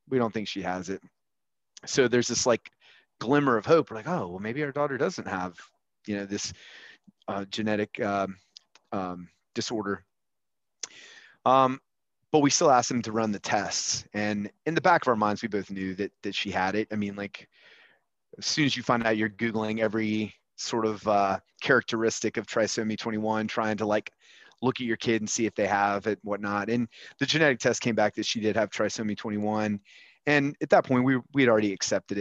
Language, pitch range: English, 100-120 Hz